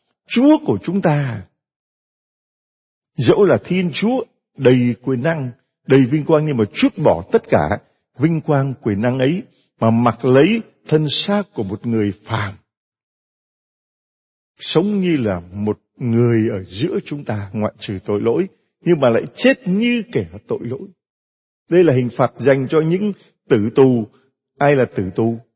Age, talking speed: 60-79, 160 wpm